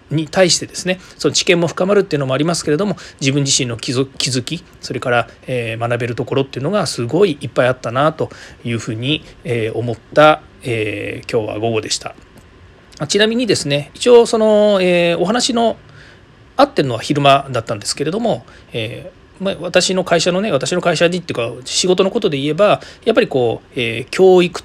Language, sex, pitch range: Japanese, male, 125-180 Hz